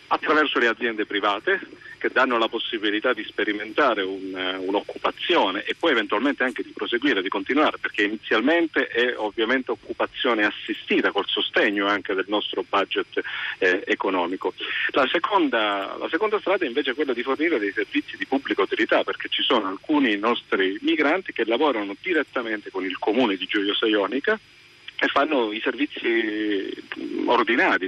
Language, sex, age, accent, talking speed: Italian, male, 40-59, native, 150 wpm